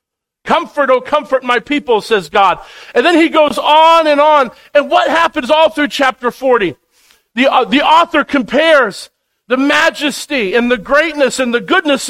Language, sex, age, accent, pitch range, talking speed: English, male, 50-69, American, 240-310 Hz, 170 wpm